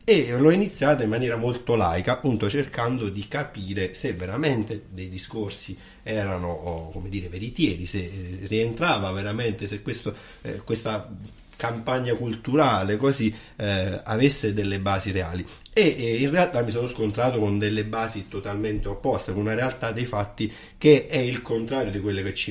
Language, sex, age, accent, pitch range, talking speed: Italian, male, 30-49, native, 100-120 Hz, 150 wpm